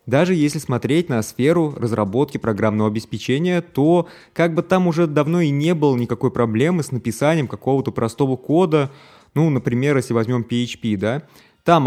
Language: Russian